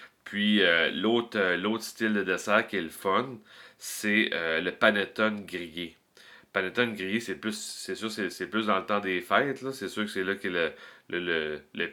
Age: 30-49